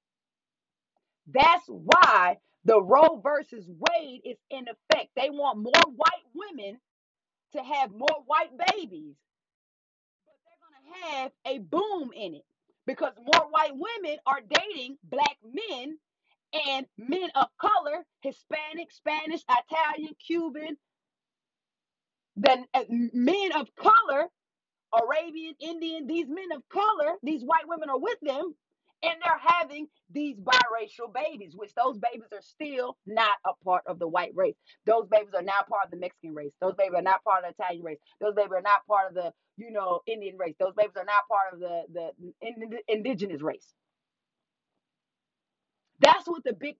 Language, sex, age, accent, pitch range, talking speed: English, female, 30-49, American, 225-325 Hz, 160 wpm